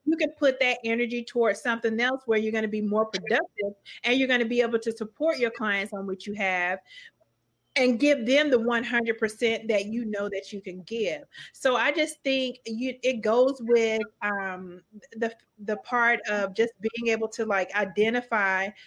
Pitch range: 205-245 Hz